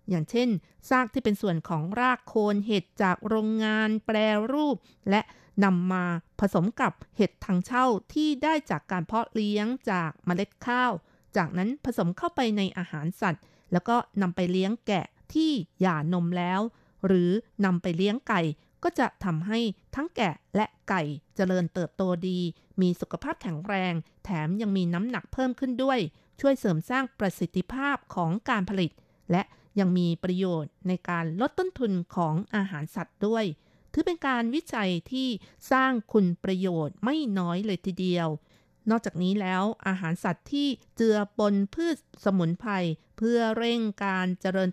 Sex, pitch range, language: female, 180-235 Hz, Thai